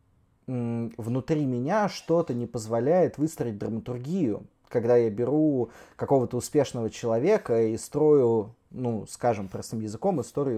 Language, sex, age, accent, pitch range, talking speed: Russian, male, 20-39, native, 110-150 Hz, 115 wpm